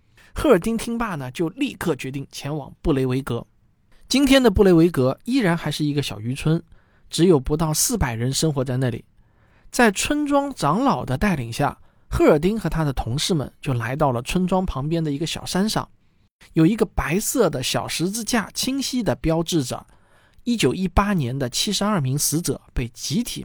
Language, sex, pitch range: Chinese, male, 125-195 Hz